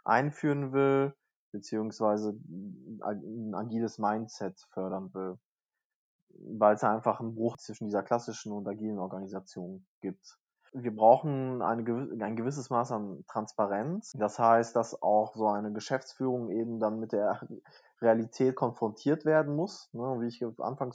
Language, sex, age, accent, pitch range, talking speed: German, male, 20-39, German, 110-130 Hz, 140 wpm